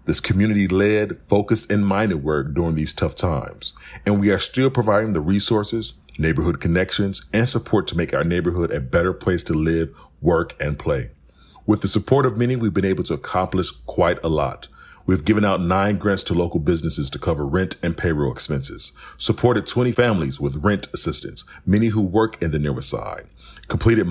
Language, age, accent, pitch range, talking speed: English, 40-59, American, 85-105 Hz, 185 wpm